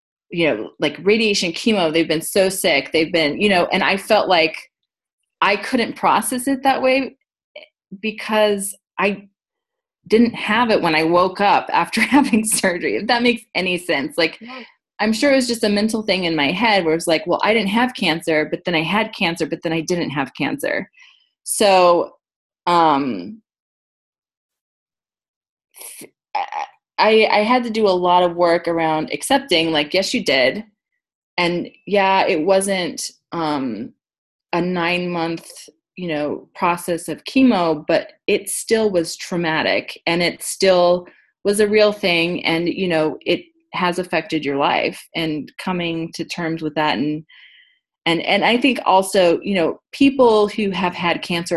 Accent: American